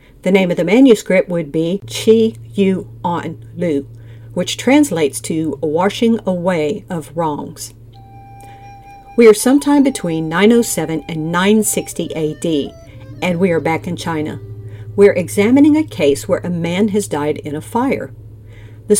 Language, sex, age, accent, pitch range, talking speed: English, female, 50-69, American, 150-210 Hz, 140 wpm